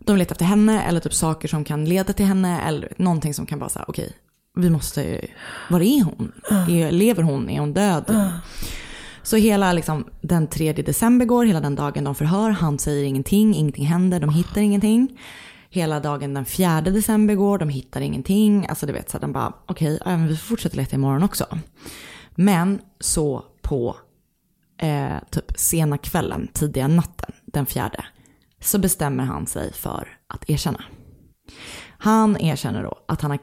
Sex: female